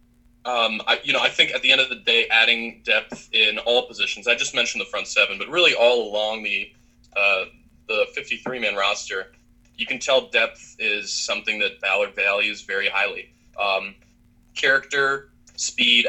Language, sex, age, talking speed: English, male, 20-39, 170 wpm